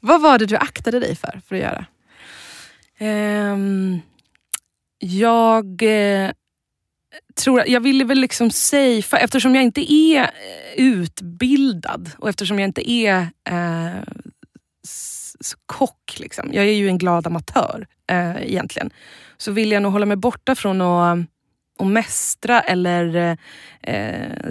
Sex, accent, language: female, native, Swedish